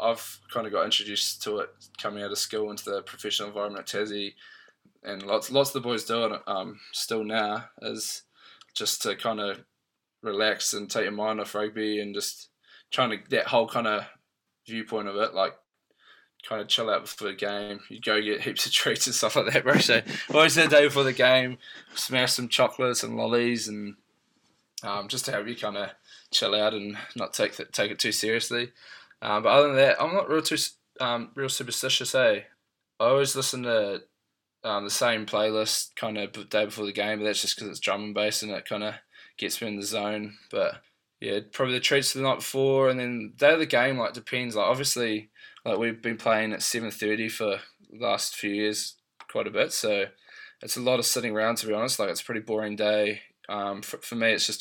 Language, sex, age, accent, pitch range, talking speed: English, male, 10-29, Australian, 105-130 Hz, 220 wpm